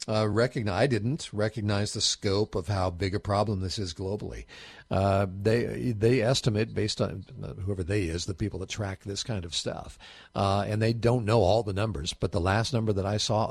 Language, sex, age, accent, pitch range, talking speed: English, male, 50-69, American, 100-125 Hz, 210 wpm